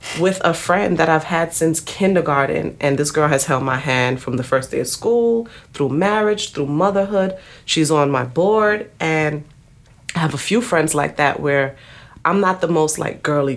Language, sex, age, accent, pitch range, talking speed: English, female, 30-49, American, 140-170 Hz, 195 wpm